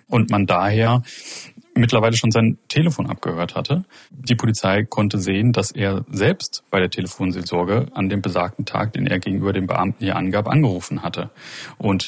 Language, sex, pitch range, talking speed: German, male, 95-115 Hz, 165 wpm